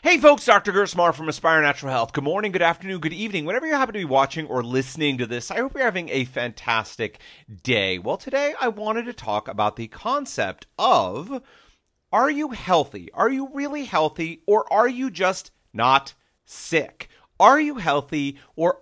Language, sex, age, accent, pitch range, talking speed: English, male, 40-59, American, 130-210 Hz, 185 wpm